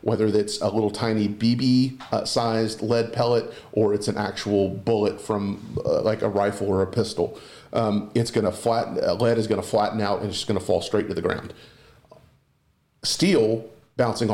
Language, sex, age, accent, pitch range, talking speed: English, male, 40-59, American, 105-120 Hz, 190 wpm